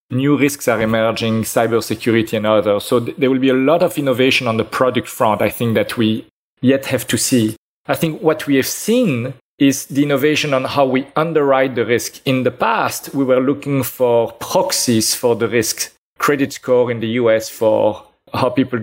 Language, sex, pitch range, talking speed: English, male, 115-135 Hz, 195 wpm